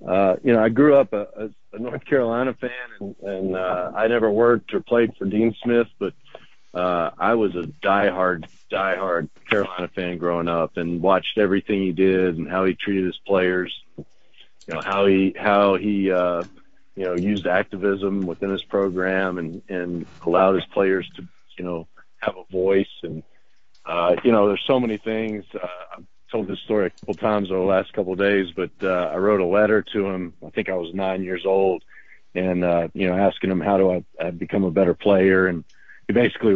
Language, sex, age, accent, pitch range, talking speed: English, male, 50-69, American, 90-105 Hz, 200 wpm